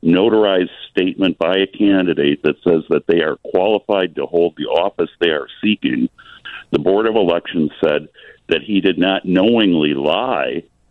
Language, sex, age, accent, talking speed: English, male, 50-69, American, 160 wpm